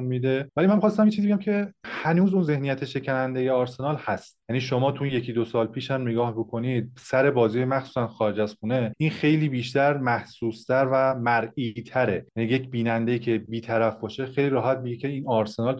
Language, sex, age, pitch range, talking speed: Persian, male, 30-49, 115-135 Hz, 190 wpm